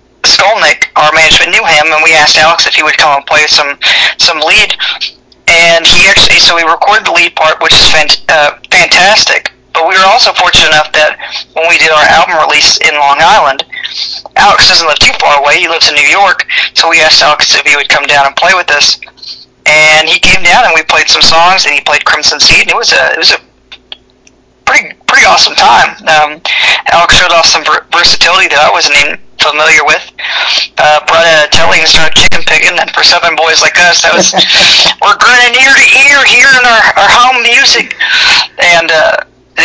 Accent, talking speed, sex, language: American, 210 wpm, male, English